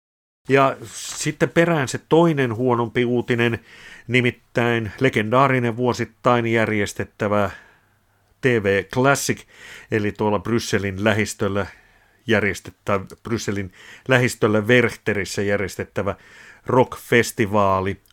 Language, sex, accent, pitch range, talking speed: Finnish, male, native, 100-120 Hz, 75 wpm